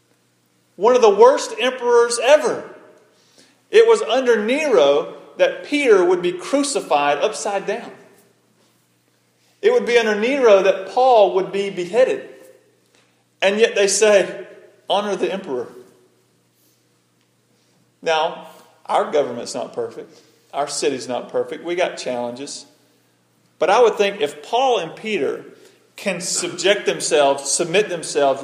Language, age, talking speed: English, 40-59, 125 wpm